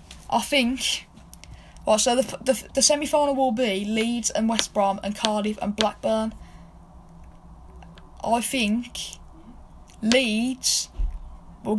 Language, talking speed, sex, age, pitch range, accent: English, 110 wpm, female, 10-29, 225-300 Hz, British